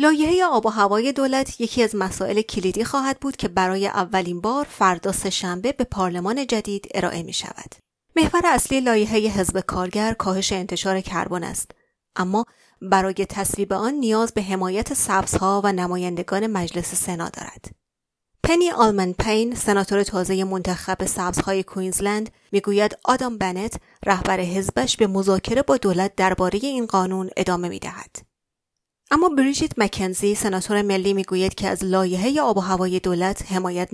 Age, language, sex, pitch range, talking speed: 30-49, Persian, female, 185-230 Hz, 145 wpm